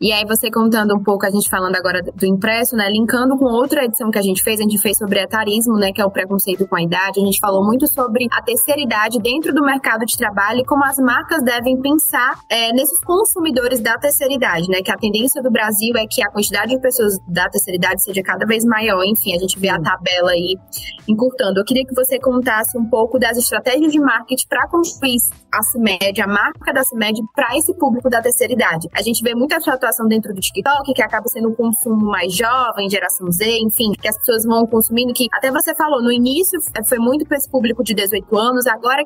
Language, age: English, 20-39